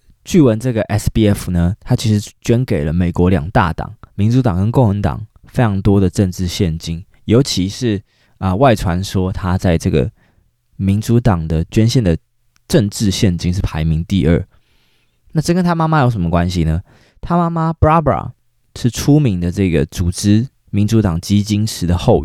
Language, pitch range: Chinese, 90-115 Hz